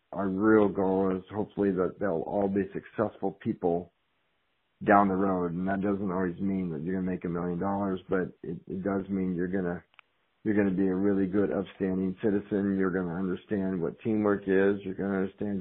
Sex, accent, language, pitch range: male, American, English, 95-105 Hz